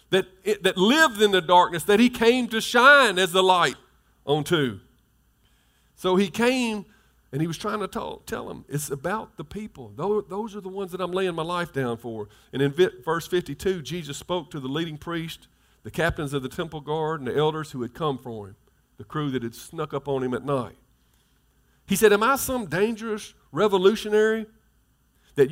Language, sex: English, male